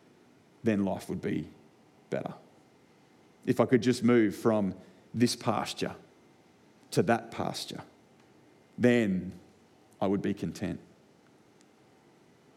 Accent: Australian